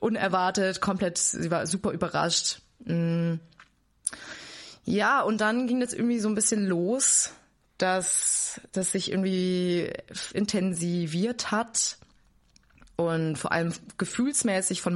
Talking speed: 110 wpm